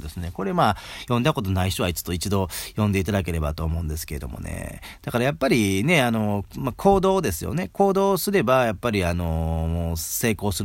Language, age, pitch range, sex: Japanese, 40-59, 85-125 Hz, male